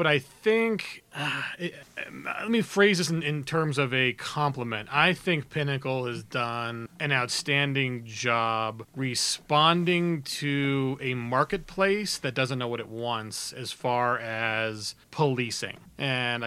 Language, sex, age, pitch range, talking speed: English, male, 30-49, 120-140 Hz, 135 wpm